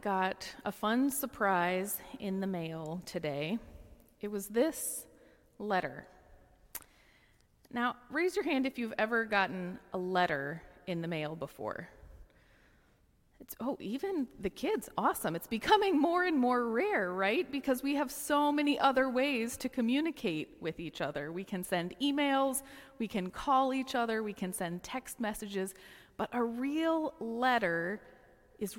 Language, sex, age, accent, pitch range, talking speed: English, female, 30-49, American, 195-265 Hz, 145 wpm